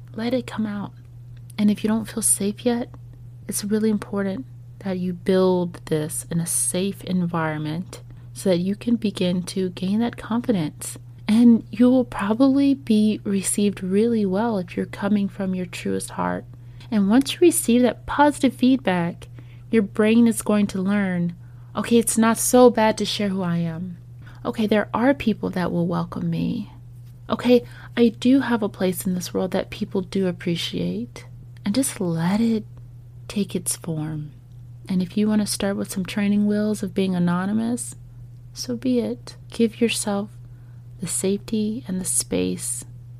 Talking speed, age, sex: 165 wpm, 30-49, female